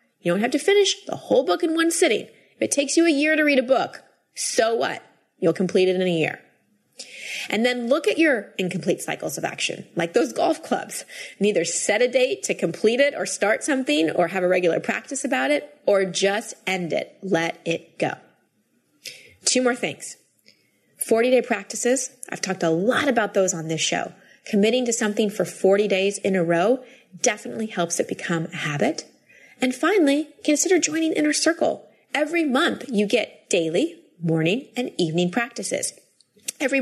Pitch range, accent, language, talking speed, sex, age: 180-260 Hz, American, English, 180 wpm, female, 30-49